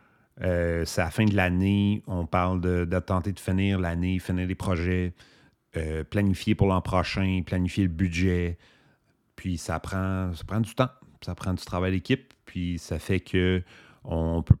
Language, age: English, 40-59